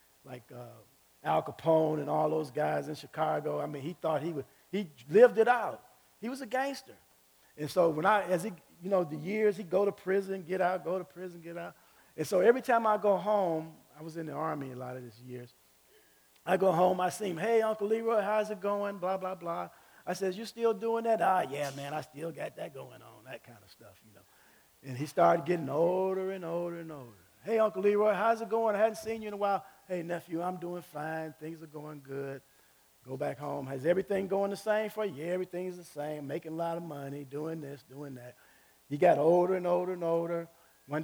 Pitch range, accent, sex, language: 125-195 Hz, American, male, English